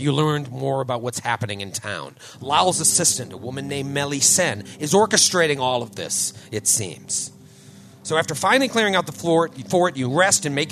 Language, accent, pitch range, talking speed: English, American, 110-170 Hz, 195 wpm